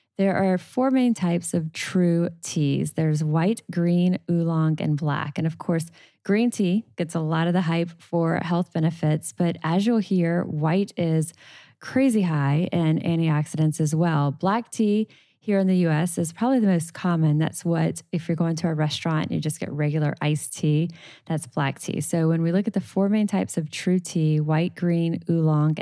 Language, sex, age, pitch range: English, female, 10-29, 155-180 Hz